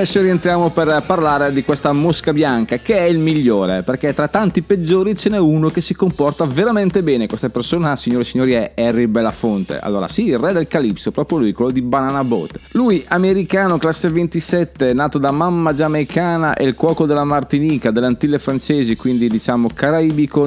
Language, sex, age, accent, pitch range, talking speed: Italian, male, 30-49, native, 125-170 Hz, 185 wpm